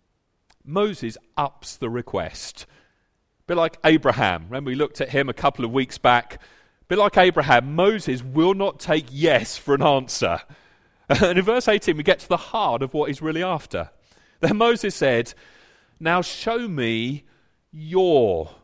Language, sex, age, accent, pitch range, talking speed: English, male, 40-59, British, 115-195 Hz, 165 wpm